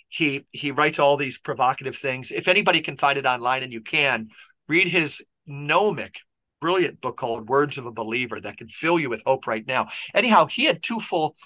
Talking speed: 205 wpm